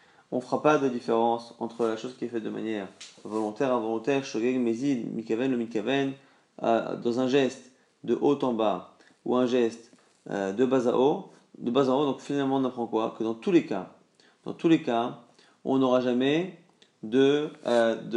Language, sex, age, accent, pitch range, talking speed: French, male, 30-49, French, 115-140 Hz, 190 wpm